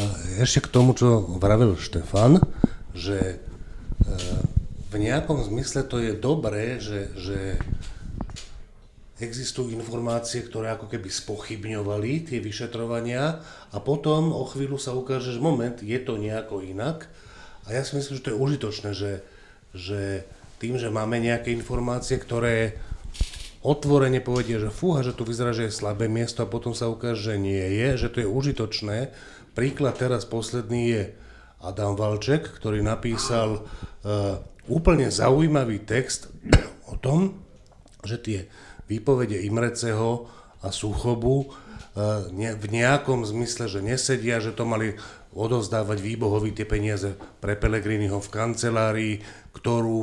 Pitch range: 105-125 Hz